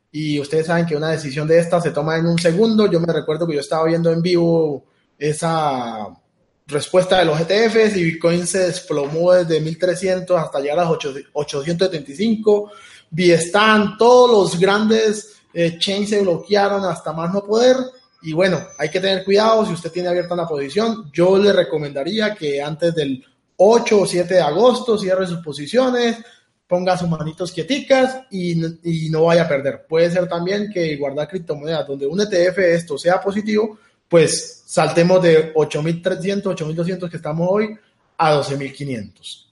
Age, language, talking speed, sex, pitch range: 20-39, Spanish, 160 wpm, male, 160-200 Hz